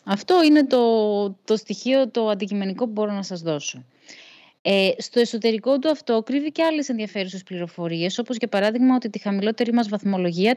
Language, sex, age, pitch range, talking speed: Greek, female, 20-39, 185-250 Hz, 170 wpm